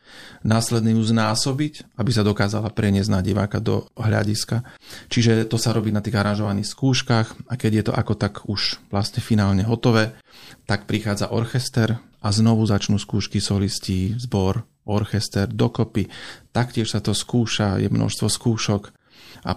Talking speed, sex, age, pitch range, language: 145 wpm, male, 30-49, 105-120 Hz, Slovak